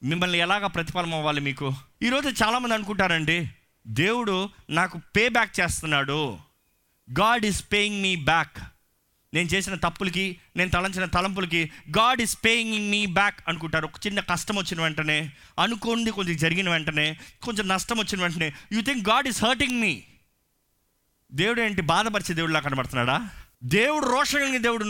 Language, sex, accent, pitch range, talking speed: Telugu, male, native, 165-220 Hz, 135 wpm